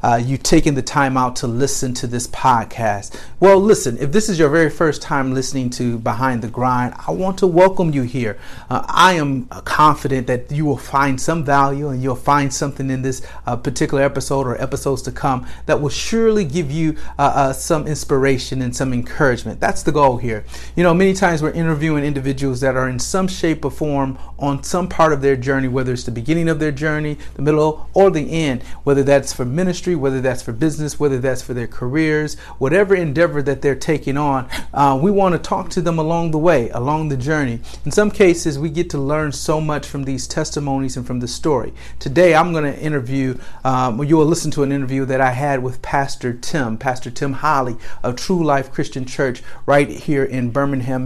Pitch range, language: 130-155 Hz, English